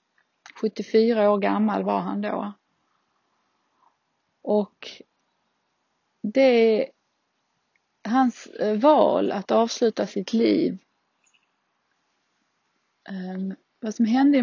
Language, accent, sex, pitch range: Swedish, native, female, 190-230 Hz